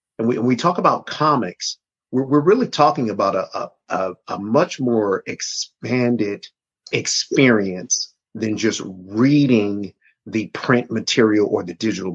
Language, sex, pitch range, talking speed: English, male, 105-130 Hz, 135 wpm